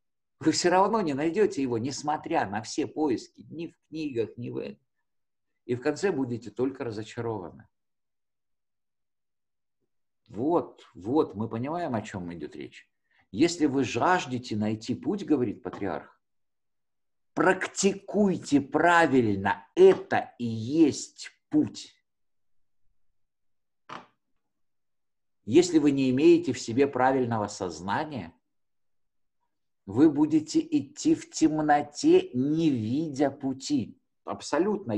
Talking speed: 105 wpm